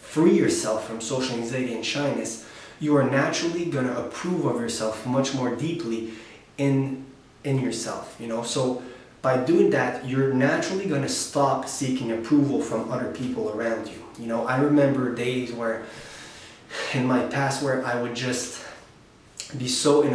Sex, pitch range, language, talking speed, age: male, 120-140 Hz, English, 160 wpm, 20-39